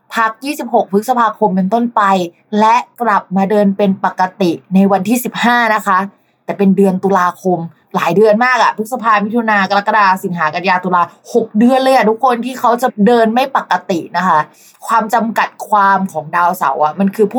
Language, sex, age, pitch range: Thai, female, 20-39, 185-235 Hz